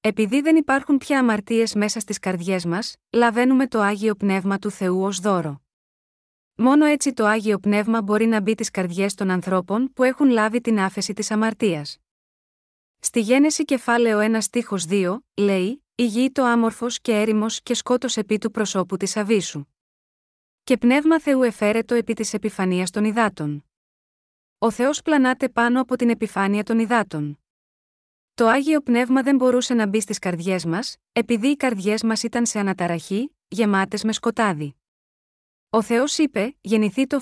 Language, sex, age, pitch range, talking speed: Greek, female, 30-49, 200-250 Hz, 160 wpm